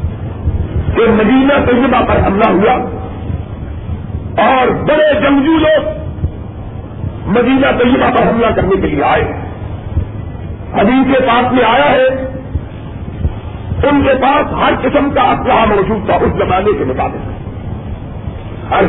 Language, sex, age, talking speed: Urdu, male, 50-69, 115 wpm